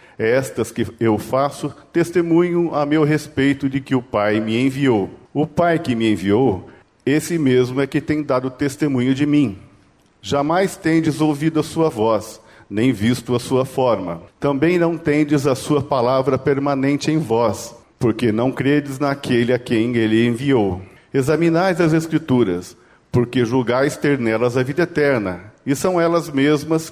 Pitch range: 115-160 Hz